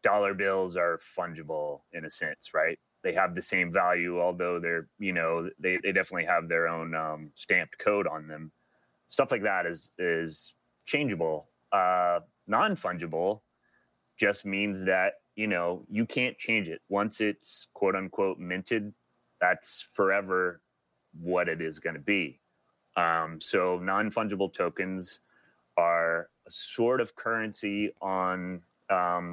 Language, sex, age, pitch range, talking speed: English, male, 30-49, 85-100 Hz, 140 wpm